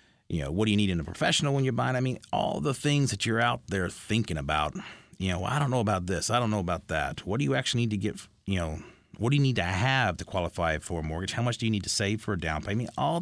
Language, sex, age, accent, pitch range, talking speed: English, male, 30-49, American, 80-105 Hz, 305 wpm